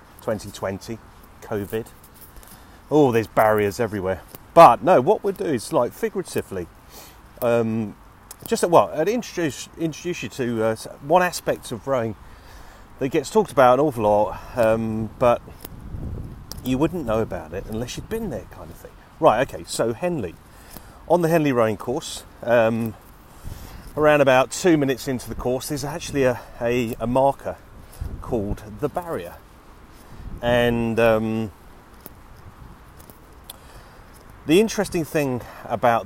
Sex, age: male, 40-59